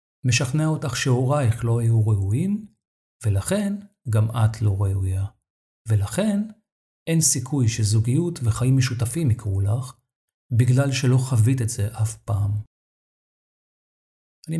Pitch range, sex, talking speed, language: 110-135 Hz, male, 110 wpm, Hebrew